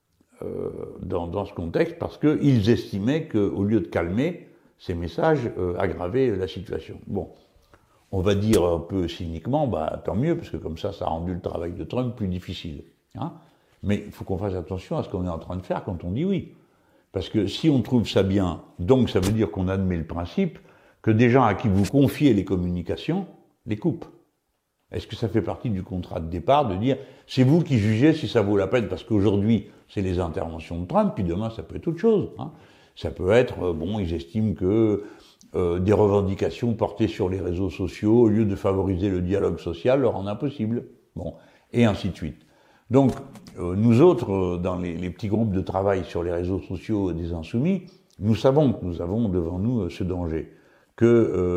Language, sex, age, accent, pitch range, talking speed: French, male, 60-79, French, 90-115 Hz, 210 wpm